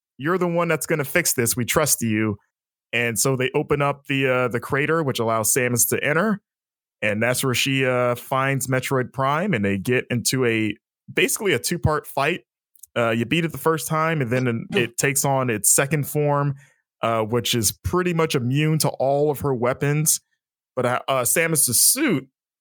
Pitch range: 120-155 Hz